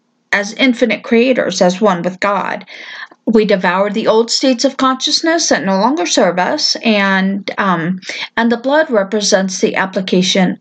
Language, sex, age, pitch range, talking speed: English, female, 50-69, 195-250 Hz, 155 wpm